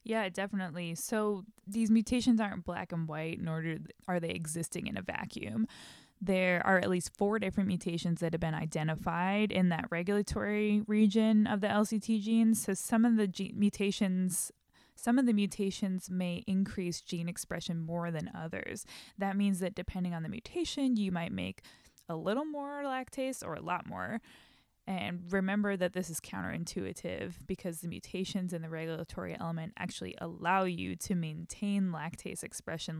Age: 20-39